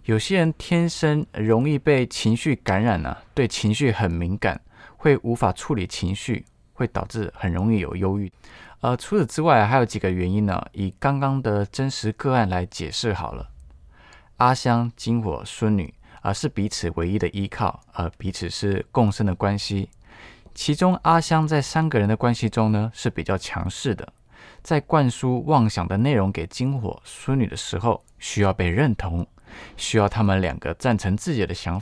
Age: 20-39